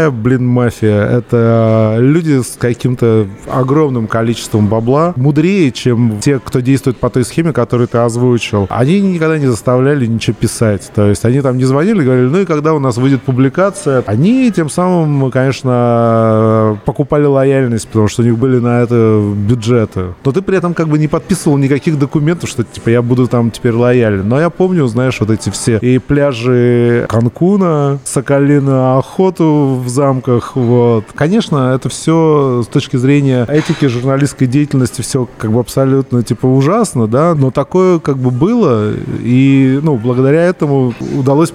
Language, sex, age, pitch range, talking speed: Russian, male, 30-49, 120-145 Hz, 160 wpm